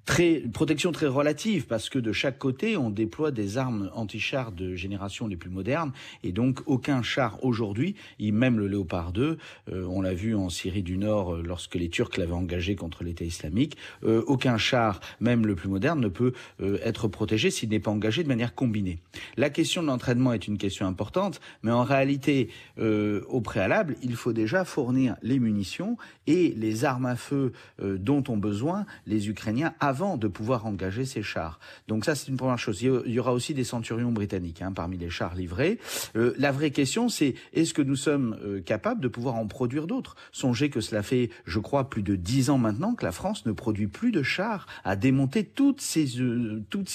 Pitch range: 105-135 Hz